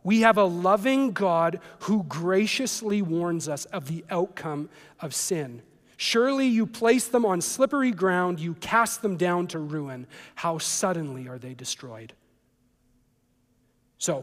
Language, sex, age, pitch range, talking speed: English, male, 40-59, 160-210 Hz, 140 wpm